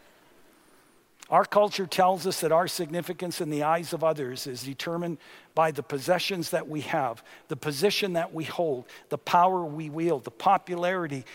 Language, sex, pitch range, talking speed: English, male, 150-190 Hz, 165 wpm